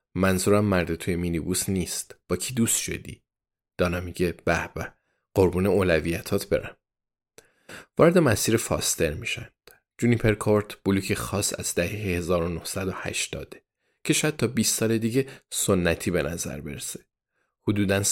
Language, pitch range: Persian, 90-110 Hz